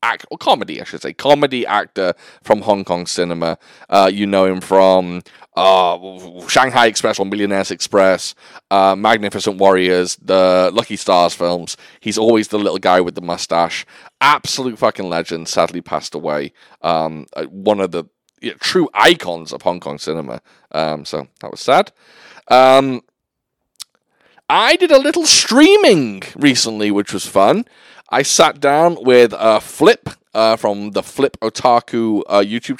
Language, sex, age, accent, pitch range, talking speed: English, male, 30-49, British, 95-135 Hz, 155 wpm